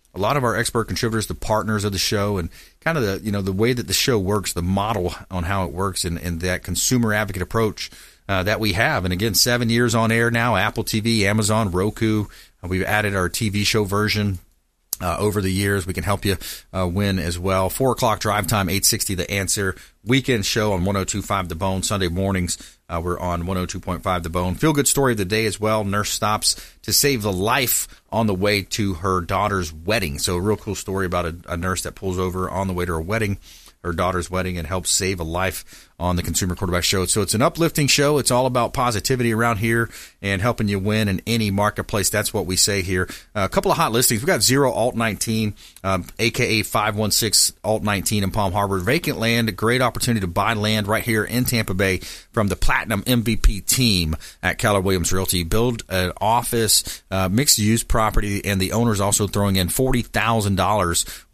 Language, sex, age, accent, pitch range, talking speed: English, male, 40-59, American, 95-115 Hz, 210 wpm